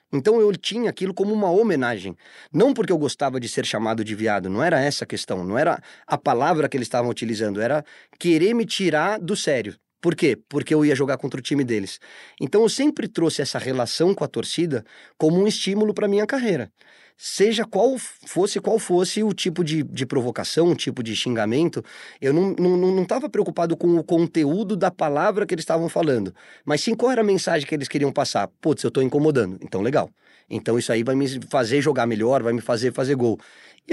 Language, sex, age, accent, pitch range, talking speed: Portuguese, male, 20-39, Brazilian, 120-175 Hz, 210 wpm